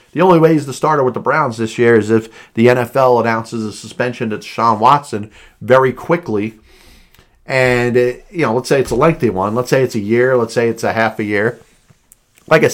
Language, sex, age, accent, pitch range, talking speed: English, male, 40-59, American, 115-135 Hz, 215 wpm